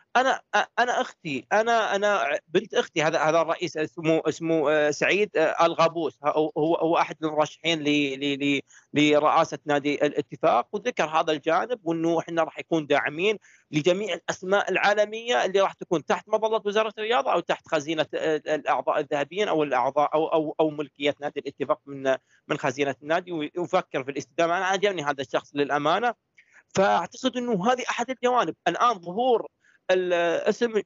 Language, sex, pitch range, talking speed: Arabic, male, 155-200 Hz, 135 wpm